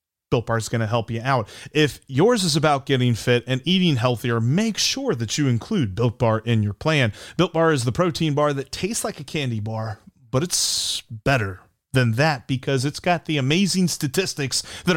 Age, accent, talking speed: 30-49, American, 205 wpm